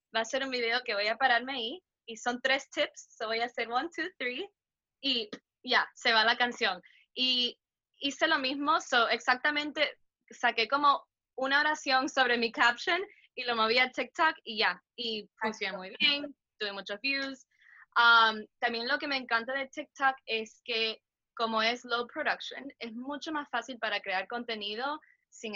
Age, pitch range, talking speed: 10-29, 225-270 Hz, 185 wpm